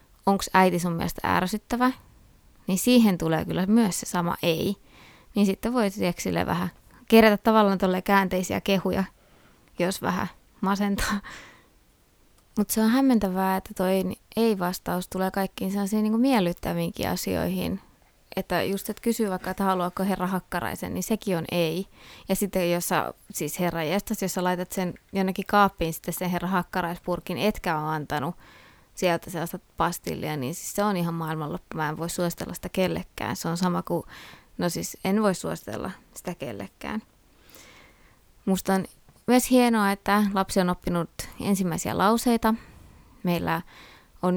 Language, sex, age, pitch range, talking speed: Finnish, female, 20-39, 175-210 Hz, 145 wpm